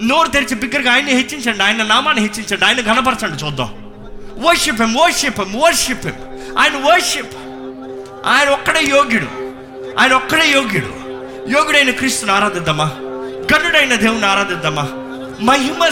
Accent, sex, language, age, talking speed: native, male, Telugu, 20-39, 110 wpm